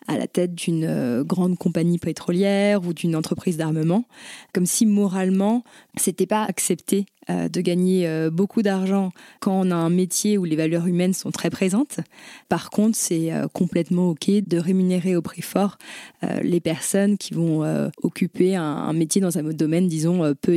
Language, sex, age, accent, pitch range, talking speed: French, female, 20-39, French, 170-205 Hz, 165 wpm